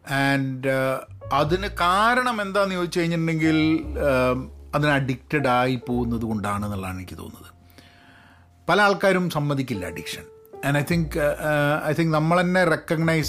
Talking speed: 110 wpm